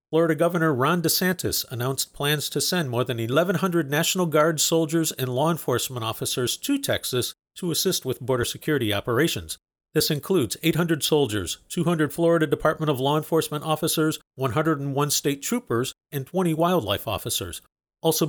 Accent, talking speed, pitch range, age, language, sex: American, 150 wpm, 130-165 Hz, 50-69, English, male